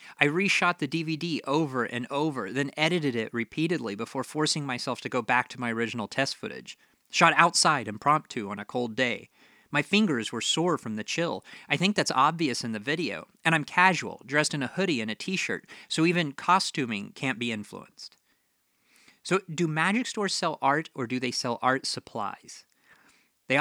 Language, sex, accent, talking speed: English, male, American, 185 wpm